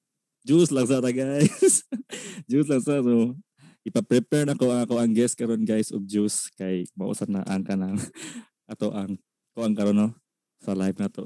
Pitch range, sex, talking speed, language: 110-145 Hz, male, 160 wpm, Filipino